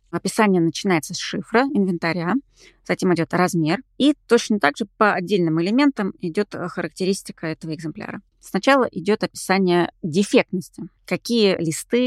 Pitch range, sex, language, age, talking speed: 170-205 Hz, female, Russian, 20-39, 125 wpm